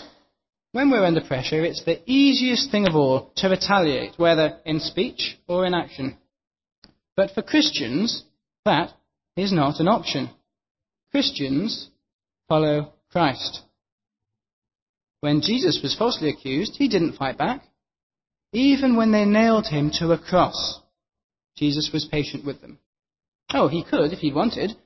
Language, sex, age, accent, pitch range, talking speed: English, male, 30-49, British, 145-210 Hz, 140 wpm